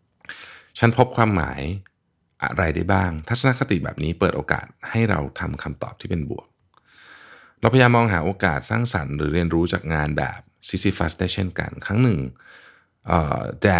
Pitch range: 75-100 Hz